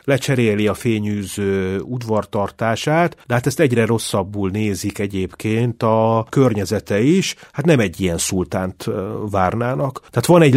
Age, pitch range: 30-49, 105-140 Hz